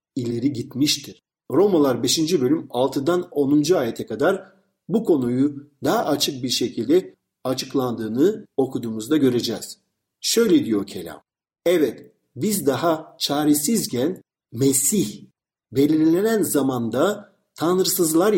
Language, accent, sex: Turkish, native, male